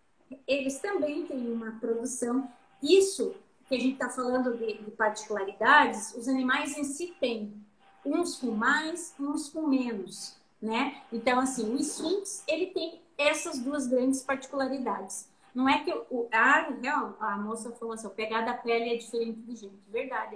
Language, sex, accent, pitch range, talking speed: Portuguese, female, Brazilian, 230-290 Hz, 155 wpm